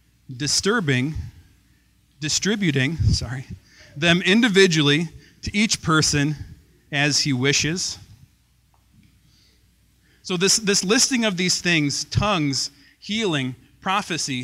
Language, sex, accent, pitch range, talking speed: English, male, American, 135-185 Hz, 85 wpm